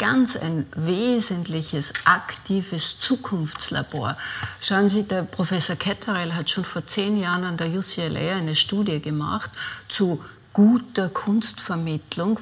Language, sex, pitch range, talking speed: German, female, 165-220 Hz, 115 wpm